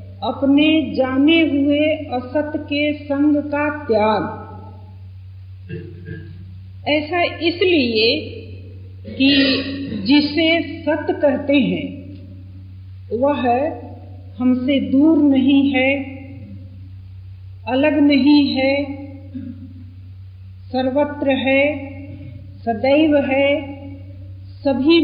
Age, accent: 50-69, native